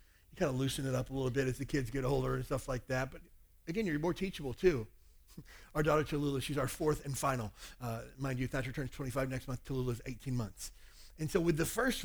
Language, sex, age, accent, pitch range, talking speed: English, male, 40-59, American, 125-165 Hz, 240 wpm